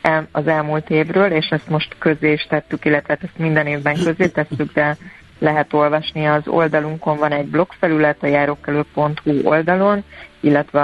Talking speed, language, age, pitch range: 160 wpm, Hungarian, 30-49, 145-155 Hz